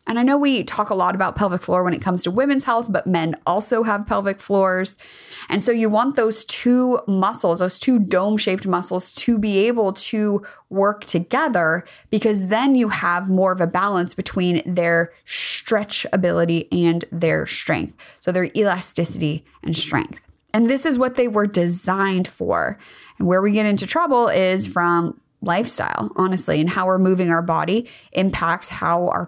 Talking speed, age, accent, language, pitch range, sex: 175 wpm, 20-39, American, English, 180-230 Hz, female